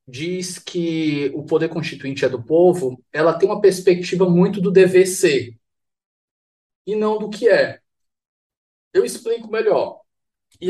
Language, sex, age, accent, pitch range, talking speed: Portuguese, male, 20-39, Brazilian, 150-210 Hz, 140 wpm